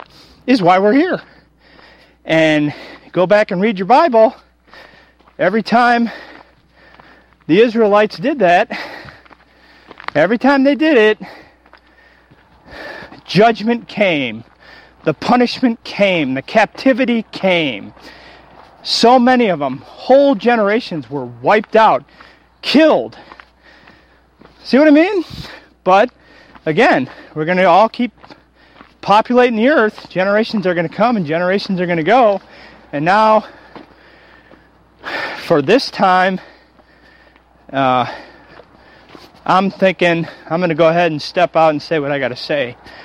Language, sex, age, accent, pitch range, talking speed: English, male, 40-59, American, 160-230 Hz, 125 wpm